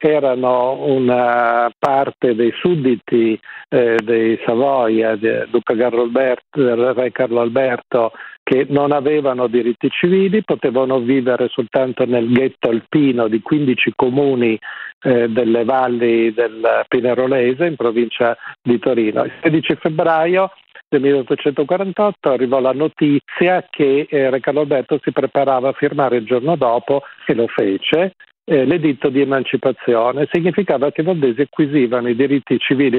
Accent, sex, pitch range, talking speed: native, male, 120-145 Hz, 125 wpm